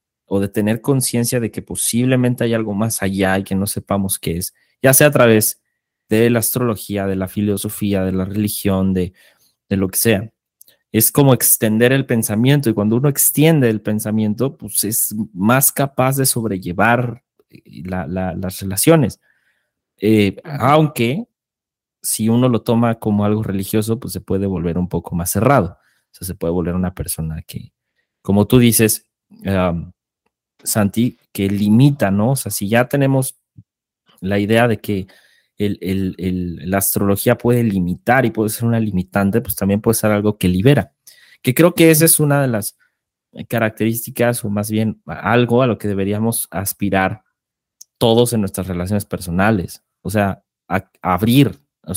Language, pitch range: Spanish, 95-120 Hz